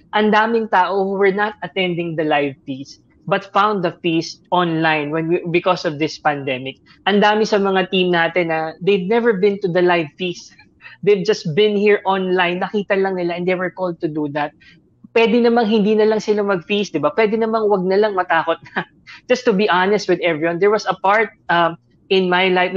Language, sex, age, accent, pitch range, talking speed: Filipino, female, 20-39, native, 165-205 Hz, 205 wpm